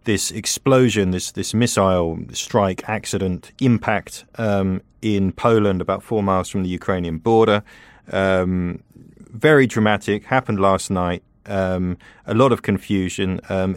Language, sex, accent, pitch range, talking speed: English, male, British, 90-110 Hz, 130 wpm